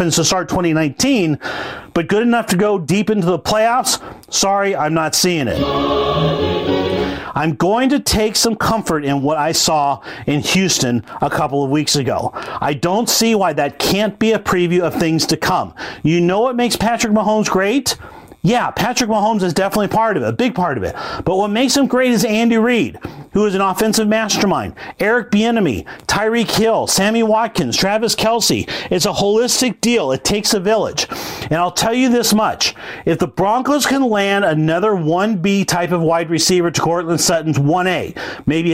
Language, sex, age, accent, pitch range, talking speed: English, male, 40-59, American, 165-215 Hz, 185 wpm